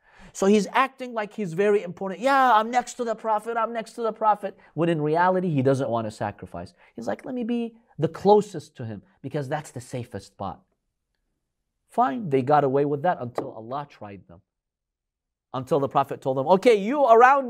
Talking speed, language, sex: 200 wpm, English, male